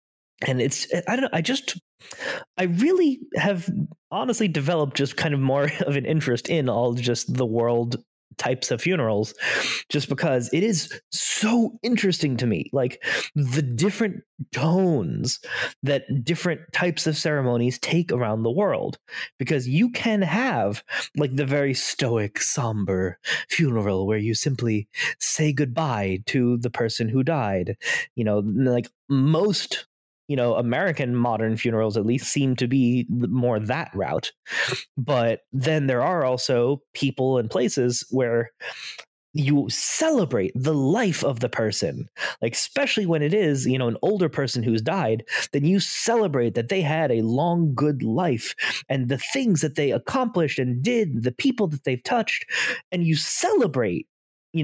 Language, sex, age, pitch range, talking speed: English, male, 20-39, 125-175 Hz, 155 wpm